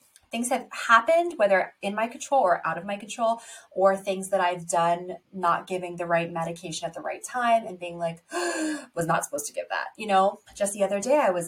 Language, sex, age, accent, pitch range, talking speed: English, female, 20-39, American, 175-230 Hz, 230 wpm